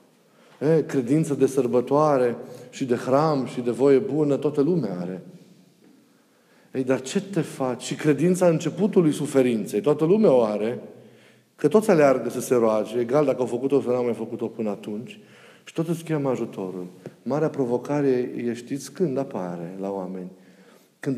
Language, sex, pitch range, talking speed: Romanian, male, 125-170 Hz, 160 wpm